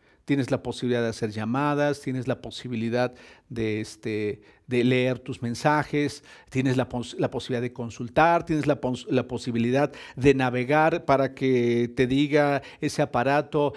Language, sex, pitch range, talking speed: Spanish, male, 125-150 Hz, 155 wpm